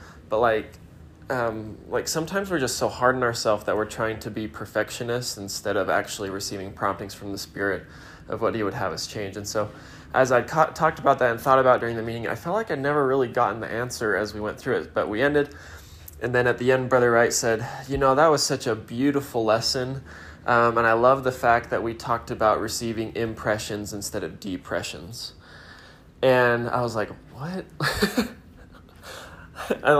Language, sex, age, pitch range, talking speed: English, male, 20-39, 100-130 Hz, 200 wpm